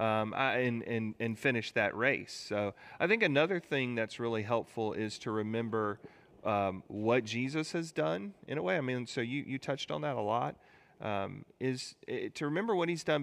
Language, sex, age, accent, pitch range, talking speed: English, male, 40-59, American, 105-135 Hz, 205 wpm